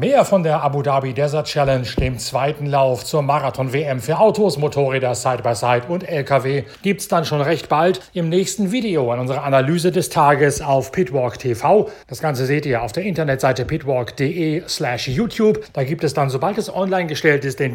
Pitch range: 130-175 Hz